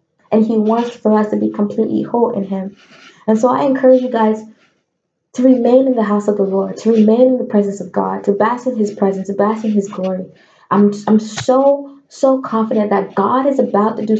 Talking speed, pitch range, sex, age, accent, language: 230 wpm, 205-230 Hz, female, 20-39, American, English